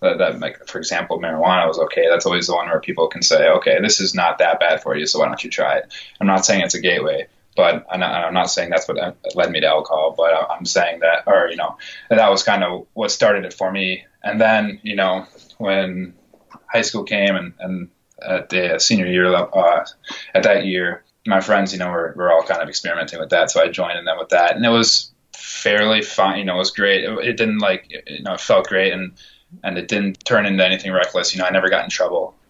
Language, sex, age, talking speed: English, male, 20-39, 245 wpm